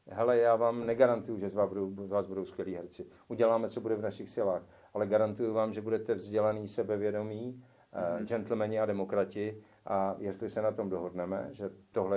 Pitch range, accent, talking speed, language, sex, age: 95-105 Hz, native, 180 wpm, Czech, male, 50-69